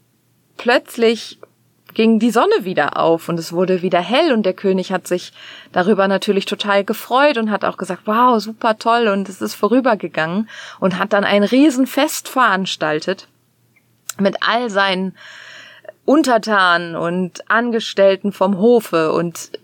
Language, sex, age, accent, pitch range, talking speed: German, female, 20-39, German, 170-225 Hz, 140 wpm